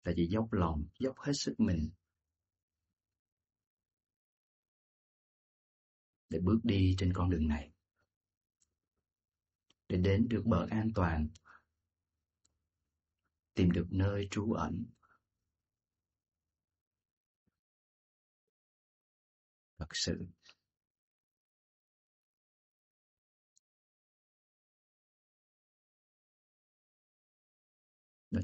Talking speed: 60 wpm